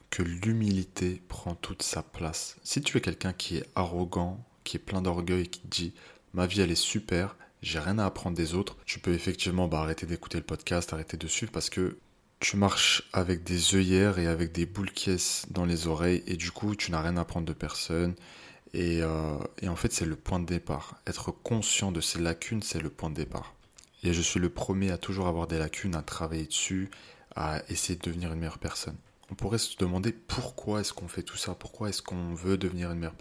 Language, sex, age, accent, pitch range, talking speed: French, male, 20-39, French, 85-95 Hz, 225 wpm